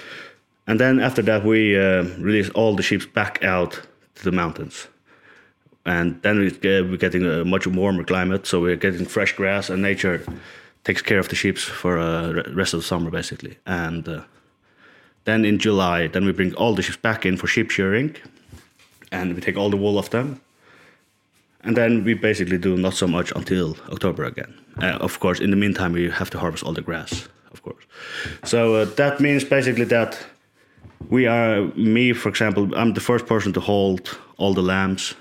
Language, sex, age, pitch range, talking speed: English, male, 20-39, 90-110 Hz, 195 wpm